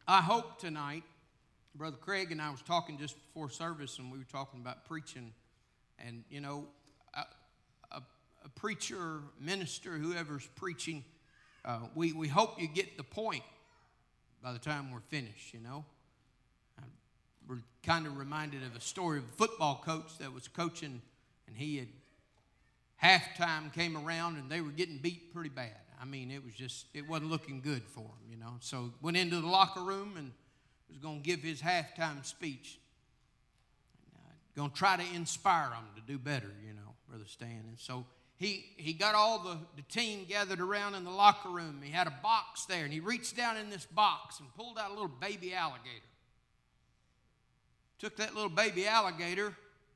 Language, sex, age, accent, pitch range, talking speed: English, male, 50-69, American, 130-180 Hz, 180 wpm